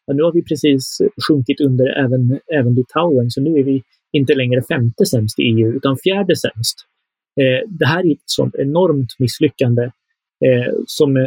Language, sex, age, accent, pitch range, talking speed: Swedish, male, 30-49, native, 130-145 Hz, 160 wpm